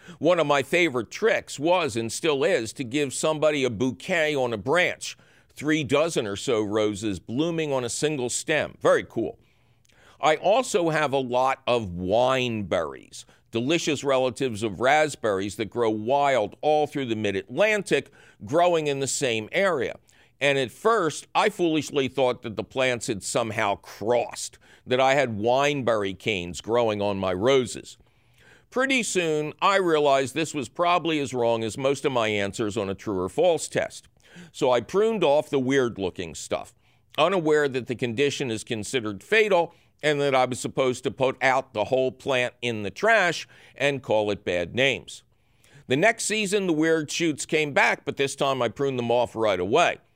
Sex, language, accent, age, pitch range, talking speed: male, English, American, 50-69, 115-155 Hz, 170 wpm